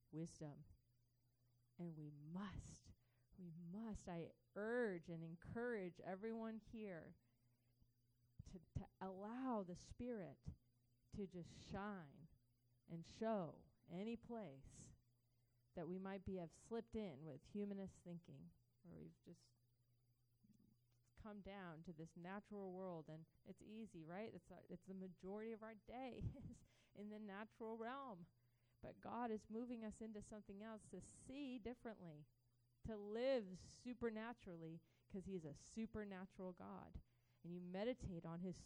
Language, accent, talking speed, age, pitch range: English, American, 130 wpm, 30-49, 130-215 Hz